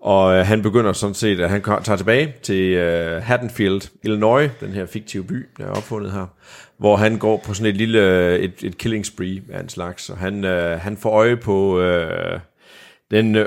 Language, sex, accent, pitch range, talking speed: Danish, male, native, 90-115 Hz, 195 wpm